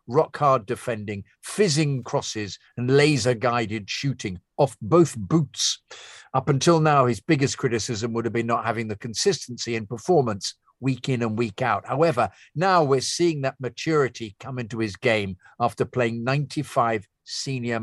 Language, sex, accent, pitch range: English, male, British, 105-130 Hz